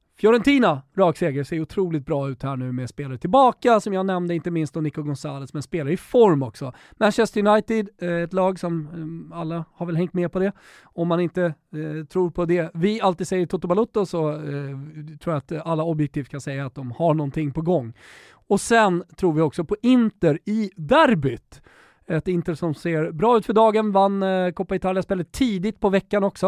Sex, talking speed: male, 200 wpm